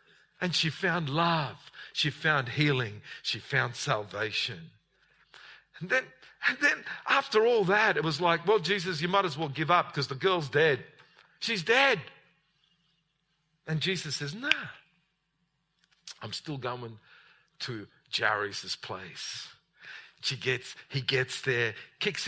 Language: English